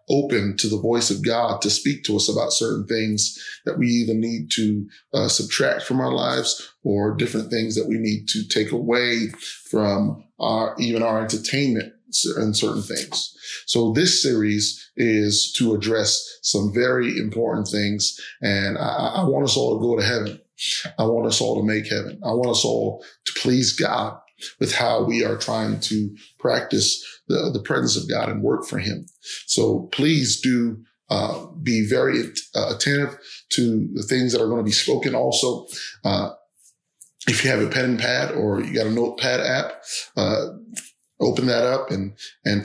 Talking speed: 175 wpm